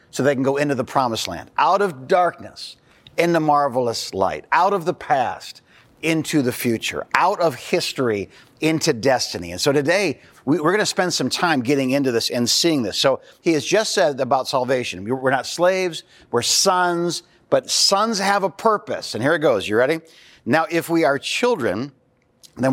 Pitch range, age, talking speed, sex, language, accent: 125-170 Hz, 50-69, 185 wpm, male, English, American